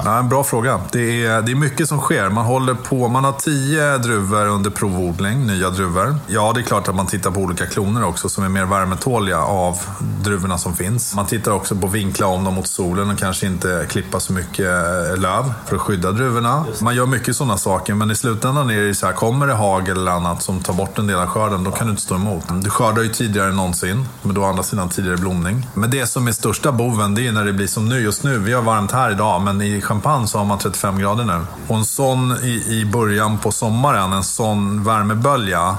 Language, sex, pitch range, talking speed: Swedish, male, 95-125 Hz, 240 wpm